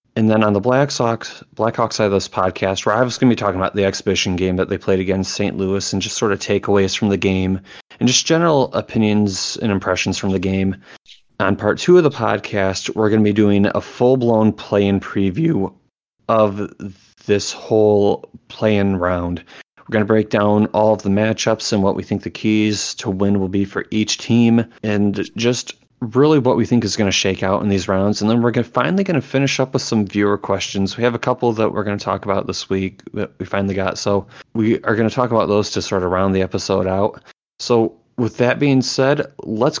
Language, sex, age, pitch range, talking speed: English, male, 30-49, 95-115 Hz, 225 wpm